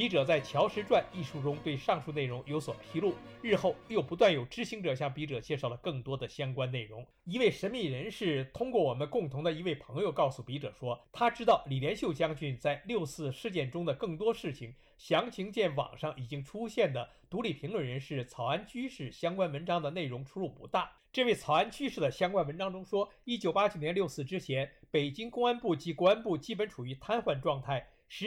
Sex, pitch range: male, 140-195 Hz